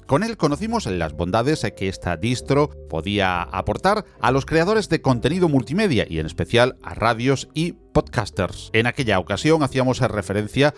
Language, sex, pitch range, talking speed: Spanish, male, 95-145 Hz, 155 wpm